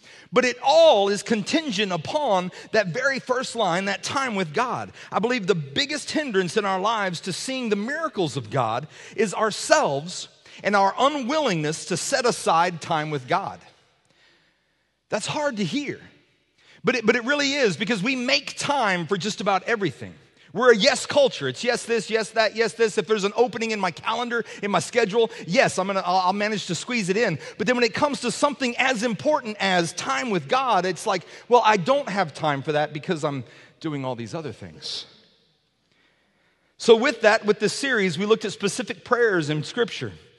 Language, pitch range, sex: English, 190-255 Hz, male